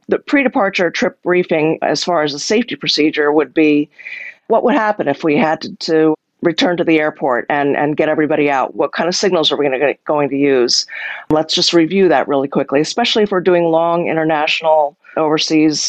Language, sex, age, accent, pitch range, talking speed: English, female, 40-59, American, 150-185 Hz, 205 wpm